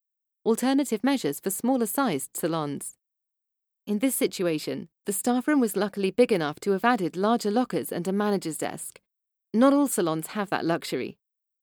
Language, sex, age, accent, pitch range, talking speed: English, female, 30-49, British, 175-230 Hz, 155 wpm